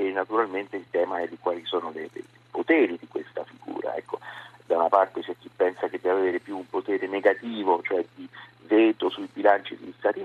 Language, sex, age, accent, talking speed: Italian, male, 40-59, native, 195 wpm